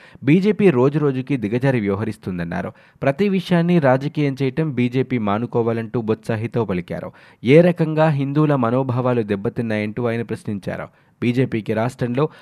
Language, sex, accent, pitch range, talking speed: Telugu, male, native, 110-145 Hz, 105 wpm